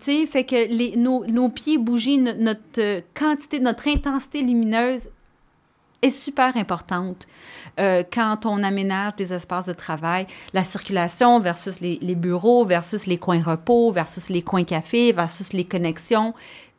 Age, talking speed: 40-59, 155 wpm